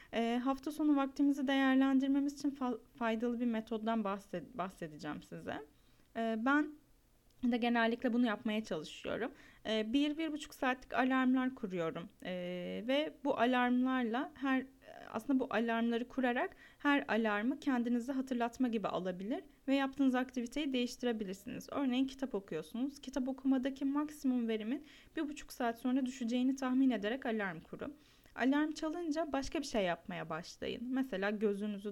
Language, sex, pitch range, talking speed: Turkish, female, 215-275 Hz, 130 wpm